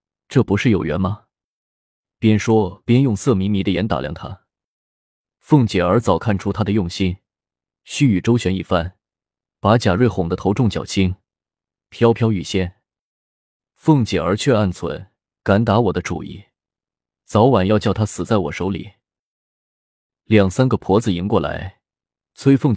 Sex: male